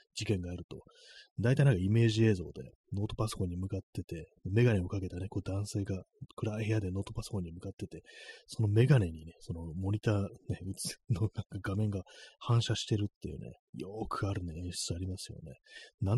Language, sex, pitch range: Japanese, male, 90-120 Hz